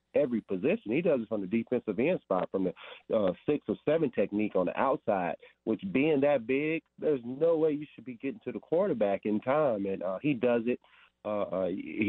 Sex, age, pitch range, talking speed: male, 40-59, 100-125 Hz, 210 wpm